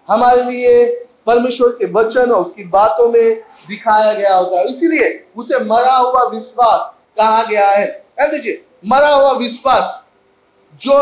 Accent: native